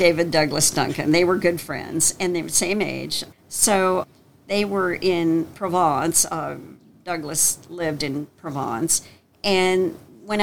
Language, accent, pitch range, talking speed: English, American, 155-195 Hz, 145 wpm